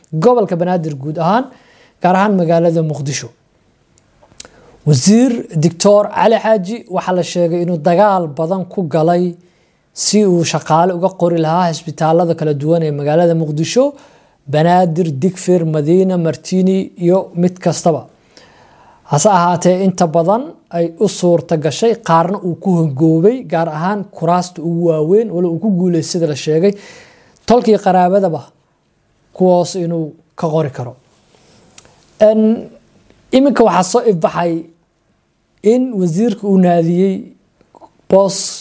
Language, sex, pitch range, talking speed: English, male, 160-190 Hz, 70 wpm